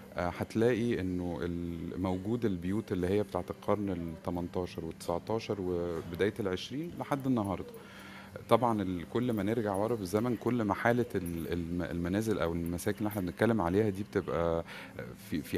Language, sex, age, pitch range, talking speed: Arabic, male, 30-49, 90-115 Hz, 125 wpm